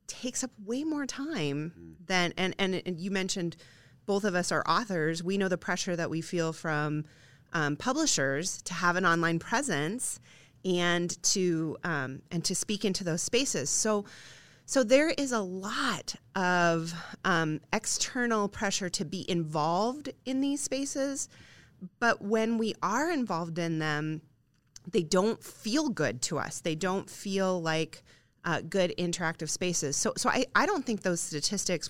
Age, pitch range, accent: 30-49, 155-200 Hz, American